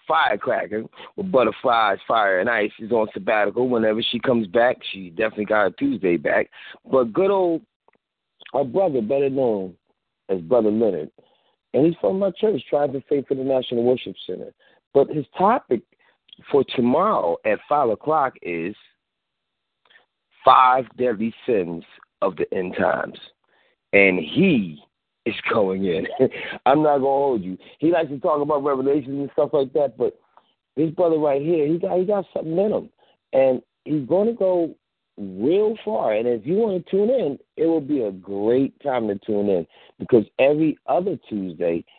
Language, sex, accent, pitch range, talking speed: English, male, American, 110-165 Hz, 170 wpm